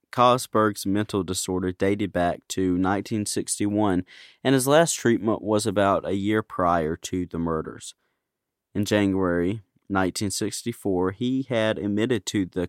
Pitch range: 90-110 Hz